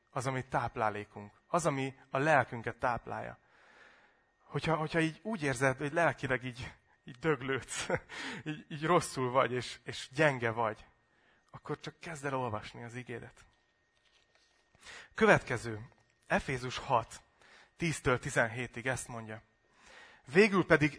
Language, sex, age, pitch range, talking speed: Hungarian, male, 30-49, 125-155 Hz, 115 wpm